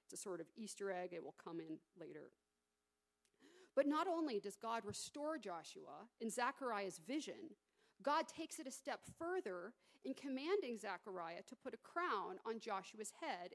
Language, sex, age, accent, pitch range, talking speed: English, female, 40-59, American, 195-280 Hz, 165 wpm